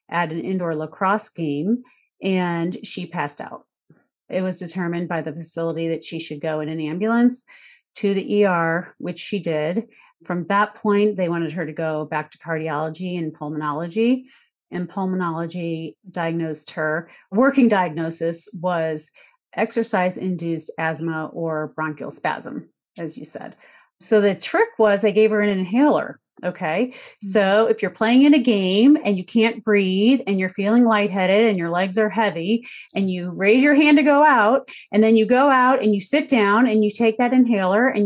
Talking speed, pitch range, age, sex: 175 wpm, 170-225 Hz, 30-49, female